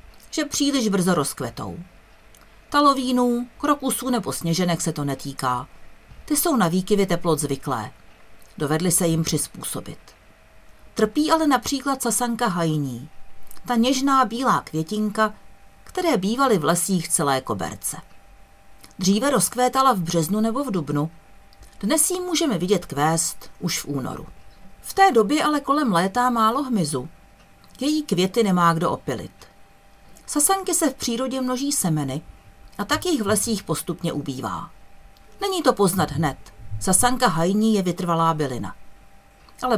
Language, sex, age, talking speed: Czech, female, 50-69, 130 wpm